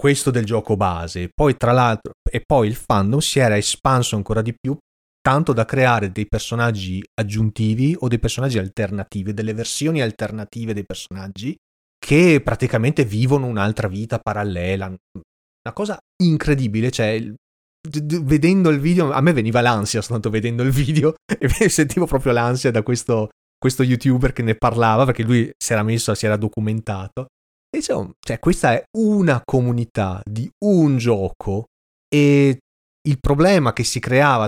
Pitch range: 105-140 Hz